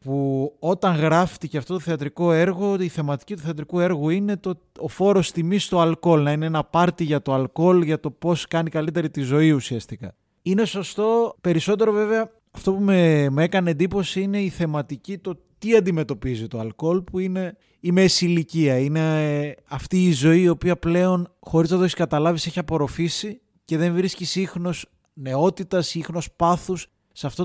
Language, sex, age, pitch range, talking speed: Greek, male, 20-39, 135-180 Hz, 175 wpm